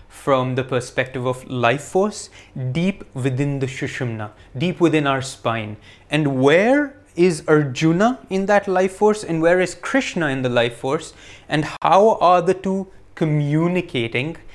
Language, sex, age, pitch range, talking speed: English, male, 30-49, 130-180 Hz, 150 wpm